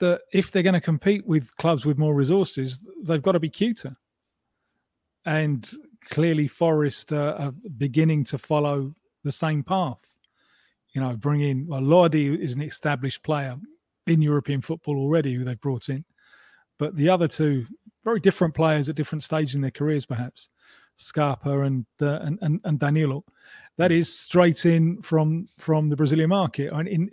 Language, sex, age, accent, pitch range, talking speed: English, male, 30-49, British, 145-170 Hz, 170 wpm